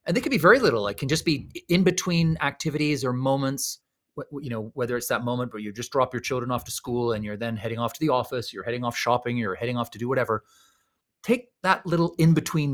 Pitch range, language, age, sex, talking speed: 120-165 Hz, English, 30-49, male, 245 wpm